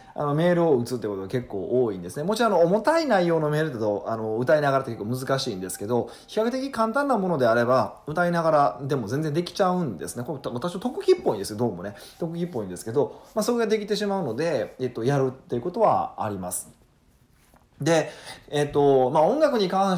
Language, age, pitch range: Japanese, 20-39, 115-195 Hz